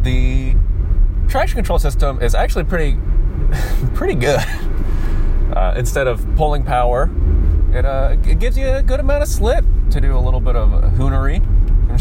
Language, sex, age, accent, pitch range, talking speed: English, male, 20-39, American, 80-95 Hz, 165 wpm